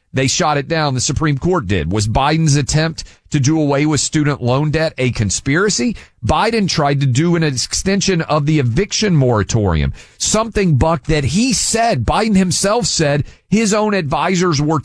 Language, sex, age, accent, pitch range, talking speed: English, male, 40-59, American, 135-190 Hz, 170 wpm